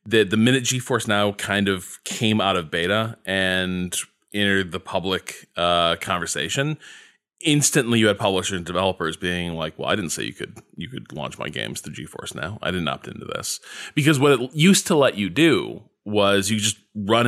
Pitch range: 90-130 Hz